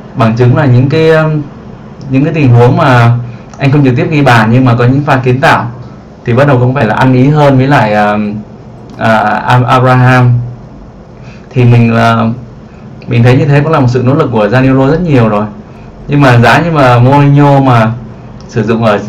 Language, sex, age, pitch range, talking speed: Vietnamese, male, 20-39, 115-135 Hz, 210 wpm